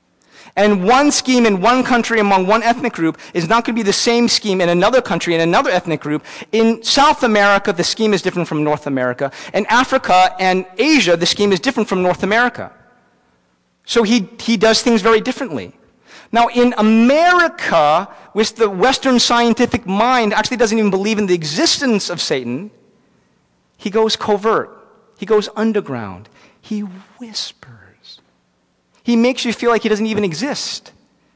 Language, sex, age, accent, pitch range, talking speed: English, male, 40-59, American, 185-245 Hz, 165 wpm